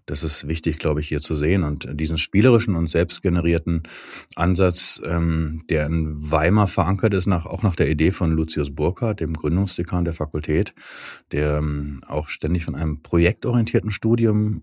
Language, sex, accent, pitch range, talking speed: German, male, German, 80-100 Hz, 150 wpm